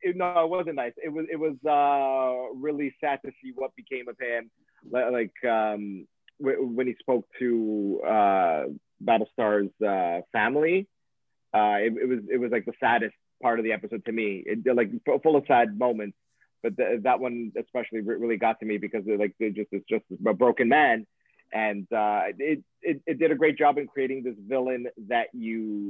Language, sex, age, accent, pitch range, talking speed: English, male, 30-49, American, 110-145 Hz, 190 wpm